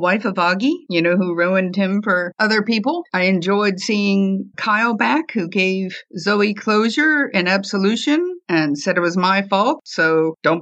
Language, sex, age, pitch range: English, female, 50-69, 180-235 Hz